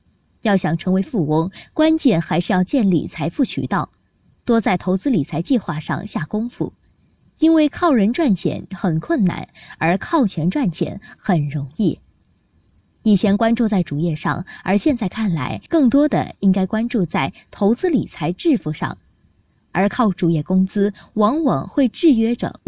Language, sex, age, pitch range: Chinese, female, 20-39, 165-240 Hz